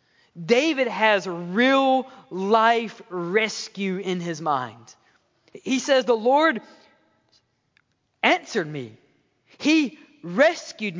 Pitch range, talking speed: 185-260 Hz, 85 wpm